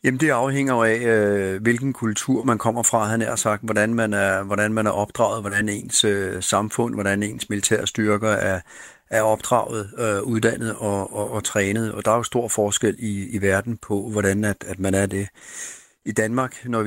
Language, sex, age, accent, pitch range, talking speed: Danish, male, 40-59, native, 100-115 Hz, 190 wpm